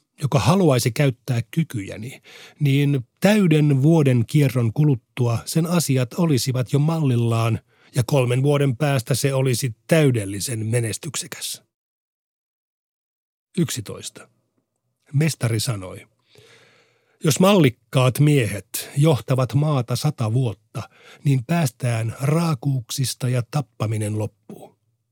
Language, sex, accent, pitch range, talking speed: Finnish, male, native, 115-150 Hz, 90 wpm